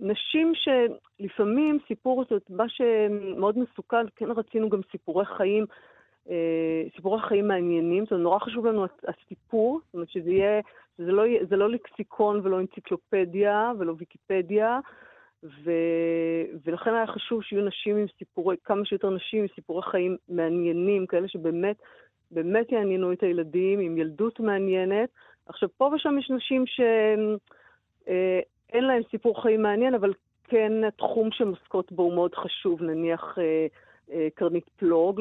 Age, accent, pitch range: 40-59, native, 170-215 Hz